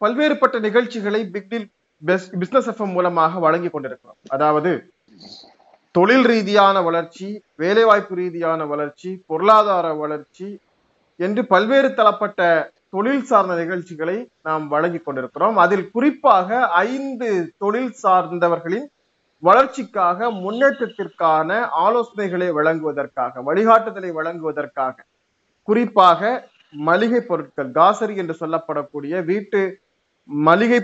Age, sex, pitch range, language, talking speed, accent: 30-49, male, 155-210 Hz, Tamil, 40 wpm, native